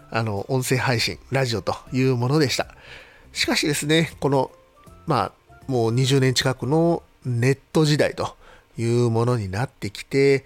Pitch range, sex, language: 110-150 Hz, male, Japanese